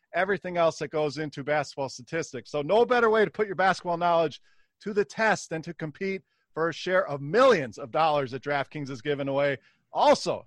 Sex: male